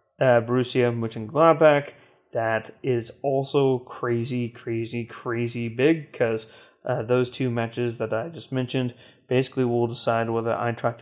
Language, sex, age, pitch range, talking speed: English, male, 20-39, 120-145 Hz, 130 wpm